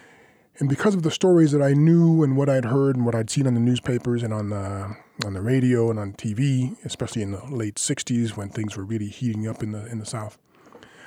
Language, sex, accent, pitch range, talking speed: English, male, American, 115-155 Hz, 240 wpm